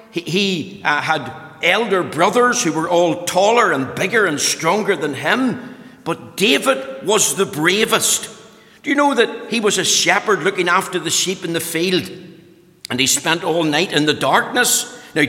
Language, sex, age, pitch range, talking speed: English, male, 60-79, 165-215 Hz, 175 wpm